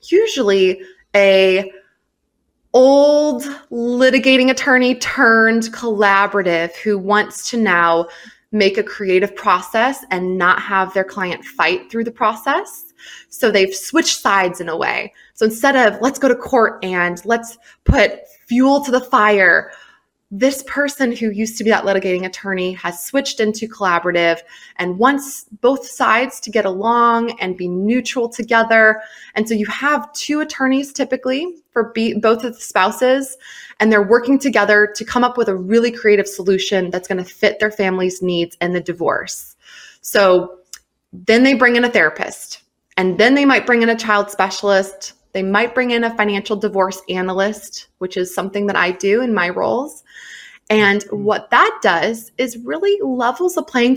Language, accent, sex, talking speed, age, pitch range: English, American, female, 160 wpm, 20-39, 195-245 Hz